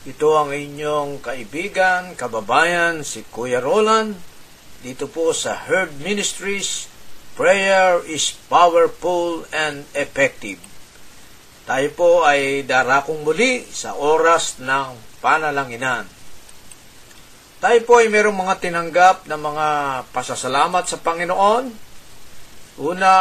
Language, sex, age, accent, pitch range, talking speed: Filipino, male, 50-69, native, 140-200 Hz, 95 wpm